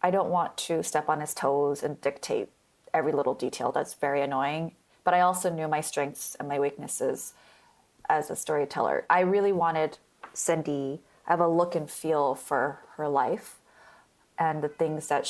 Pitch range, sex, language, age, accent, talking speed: 150-180 Hz, female, English, 20-39, American, 175 wpm